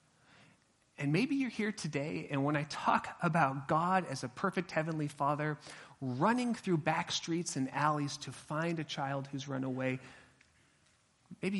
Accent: American